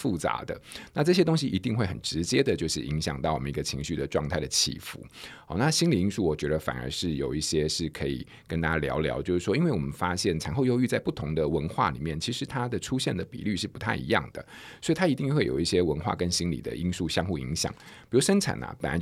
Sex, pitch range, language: male, 80-120 Hz, Chinese